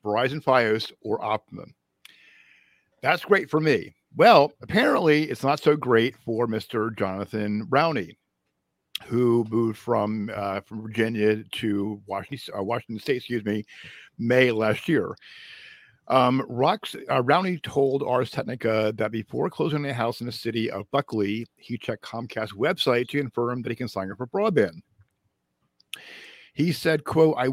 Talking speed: 150 wpm